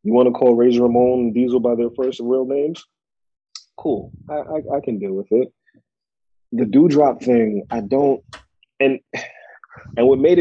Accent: American